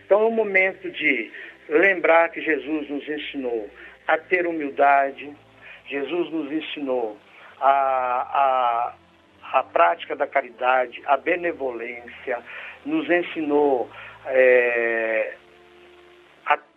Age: 60-79